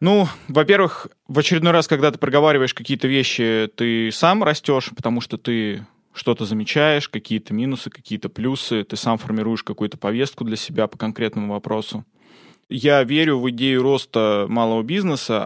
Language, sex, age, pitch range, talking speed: Russian, male, 20-39, 110-135 Hz, 150 wpm